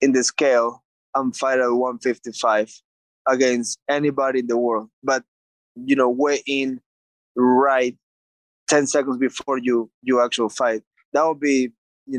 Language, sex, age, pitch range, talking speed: English, male, 20-39, 120-140 Hz, 145 wpm